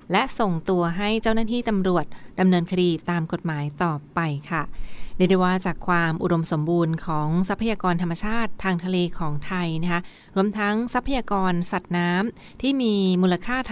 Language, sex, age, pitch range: Thai, female, 20-39, 170-200 Hz